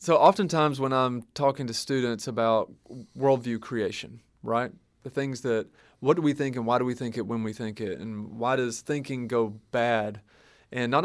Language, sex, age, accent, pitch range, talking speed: English, male, 30-49, American, 115-145 Hz, 195 wpm